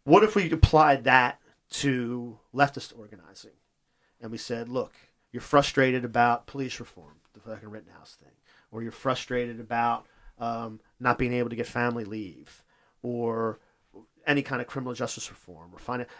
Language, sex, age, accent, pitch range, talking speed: English, male, 40-59, American, 115-135 Hz, 155 wpm